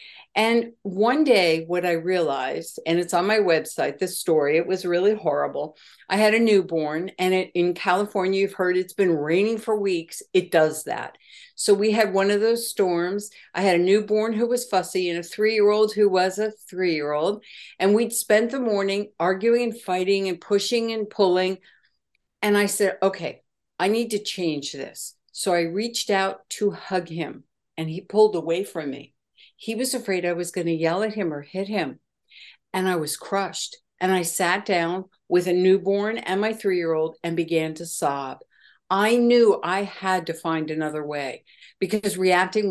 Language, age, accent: English, 60-79, American